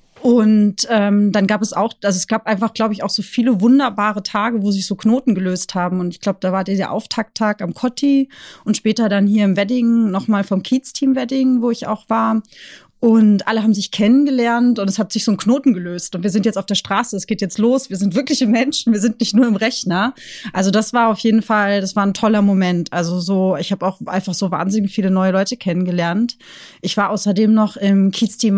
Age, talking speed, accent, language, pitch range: 30-49, 230 wpm, German, German, 195-225 Hz